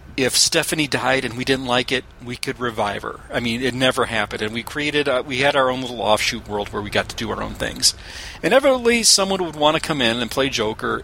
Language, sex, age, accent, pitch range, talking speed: English, male, 40-59, American, 120-160 Hz, 240 wpm